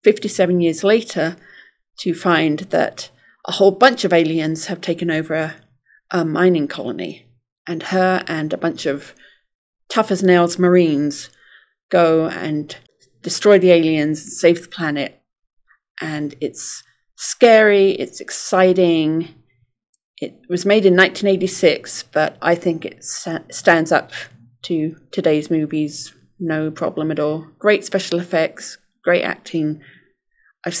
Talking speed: 125 wpm